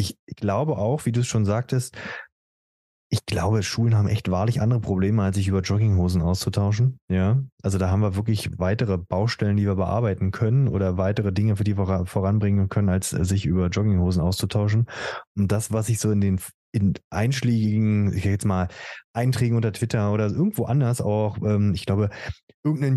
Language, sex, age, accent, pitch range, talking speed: German, male, 20-39, German, 100-120 Hz, 175 wpm